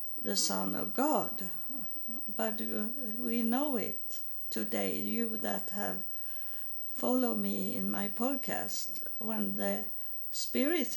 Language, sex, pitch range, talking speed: English, female, 200-240 Hz, 110 wpm